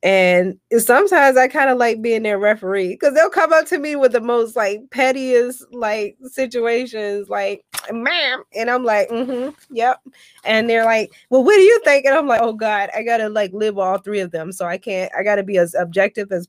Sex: female